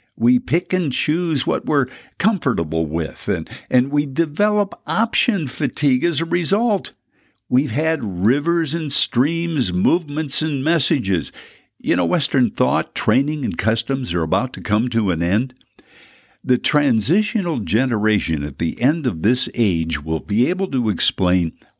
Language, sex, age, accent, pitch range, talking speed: English, male, 60-79, American, 100-165 Hz, 145 wpm